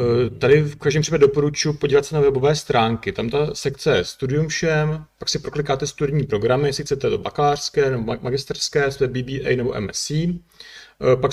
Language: Czech